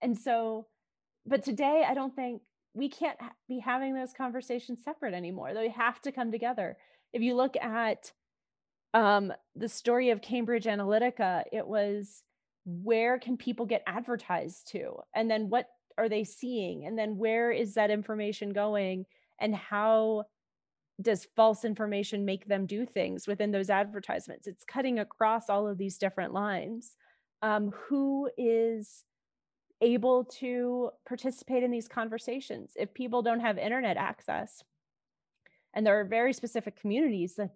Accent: American